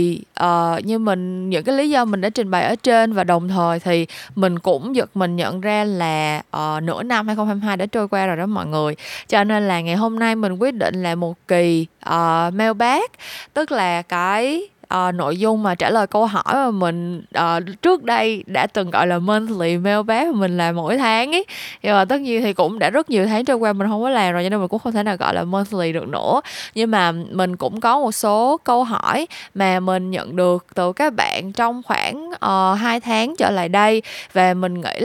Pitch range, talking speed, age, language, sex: 180-235 Hz, 230 wpm, 20-39, Vietnamese, female